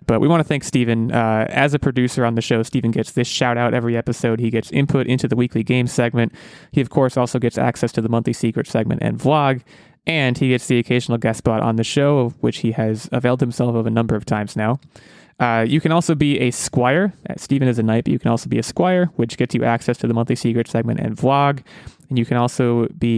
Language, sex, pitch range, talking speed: English, male, 115-135 Hz, 250 wpm